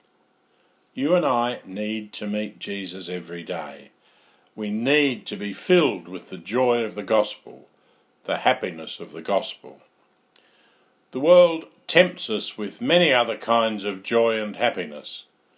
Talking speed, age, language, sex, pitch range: 145 wpm, 60-79, English, male, 110-140 Hz